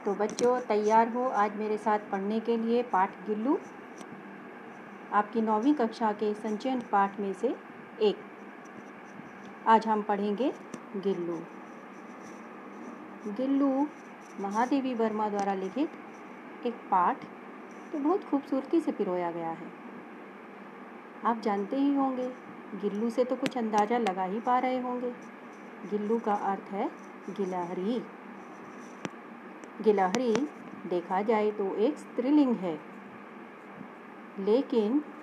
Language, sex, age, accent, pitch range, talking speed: Hindi, female, 40-59, native, 205-250 Hz, 110 wpm